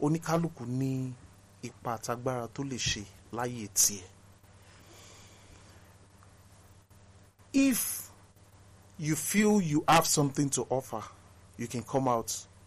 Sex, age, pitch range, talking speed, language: male, 40-59, 100-150 Hz, 55 wpm, English